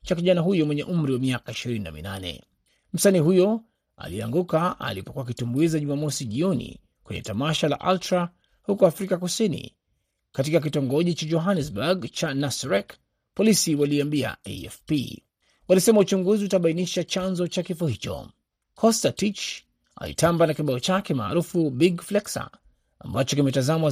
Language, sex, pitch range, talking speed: Swahili, male, 135-180 Hz, 120 wpm